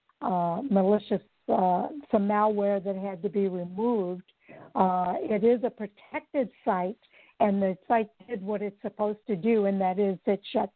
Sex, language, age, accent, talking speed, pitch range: female, English, 60-79, American, 165 wpm, 190-215 Hz